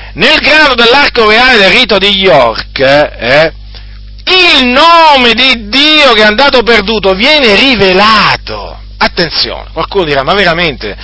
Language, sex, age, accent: Italian, male, 40-59, native